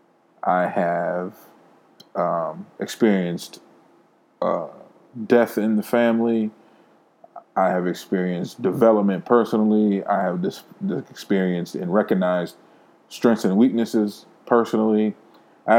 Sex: male